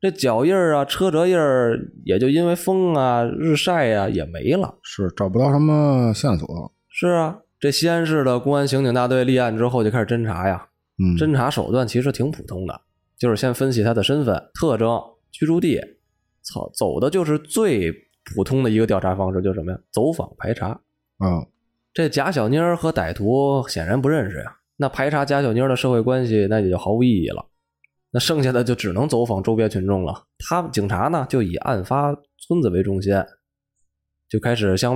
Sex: male